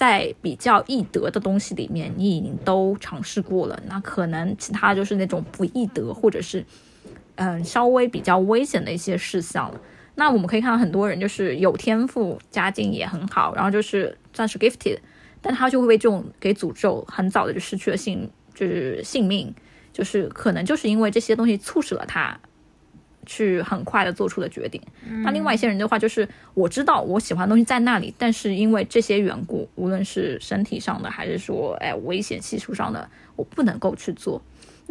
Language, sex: Chinese, female